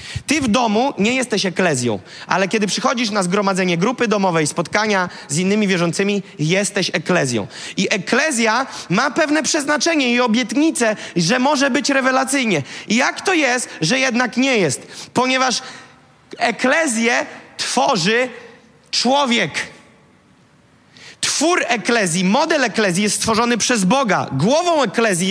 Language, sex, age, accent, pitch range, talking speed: Polish, male, 30-49, native, 200-260 Hz, 120 wpm